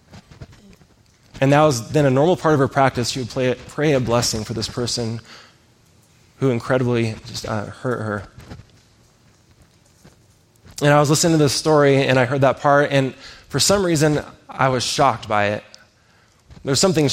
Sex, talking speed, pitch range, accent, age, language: male, 170 wpm, 115-145 Hz, American, 20-39, English